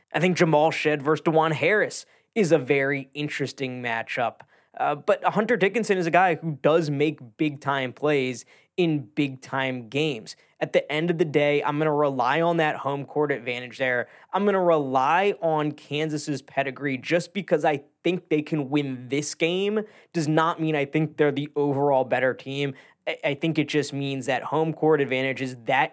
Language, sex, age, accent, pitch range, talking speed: English, male, 20-39, American, 140-160 Hz, 185 wpm